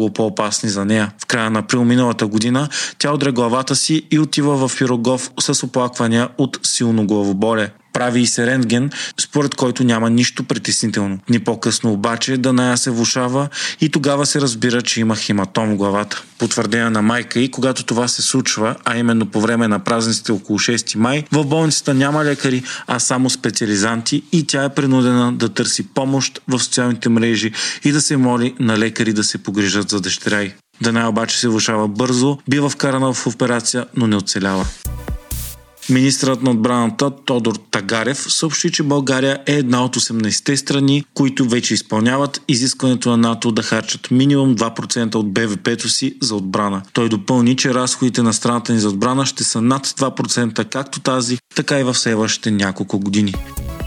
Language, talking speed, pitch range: Bulgarian, 165 wpm, 110-135 Hz